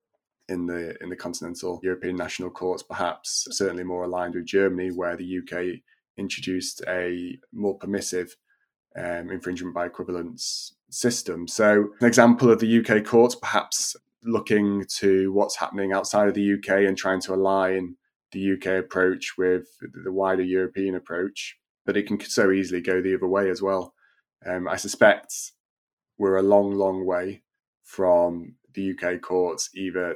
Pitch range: 90-95 Hz